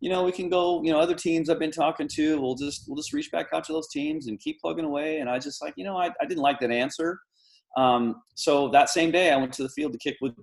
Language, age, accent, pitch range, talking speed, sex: English, 30-49, American, 115-170 Hz, 305 wpm, male